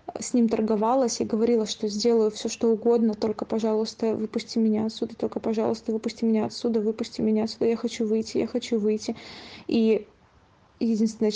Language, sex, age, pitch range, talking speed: Russian, female, 20-39, 215-230 Hz, 165 wpm